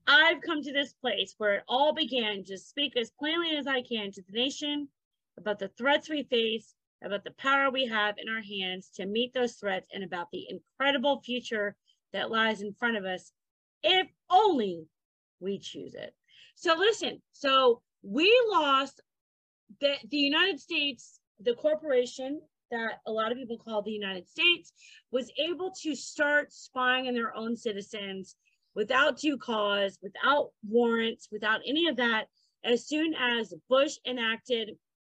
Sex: female